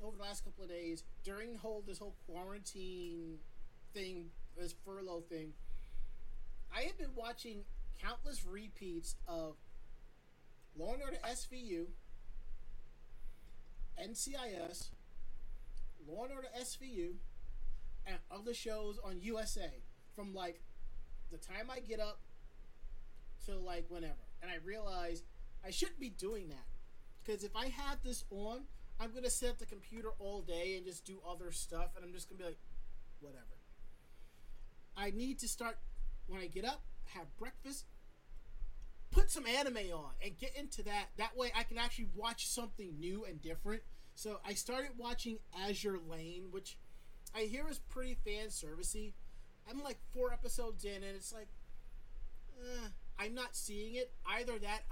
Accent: American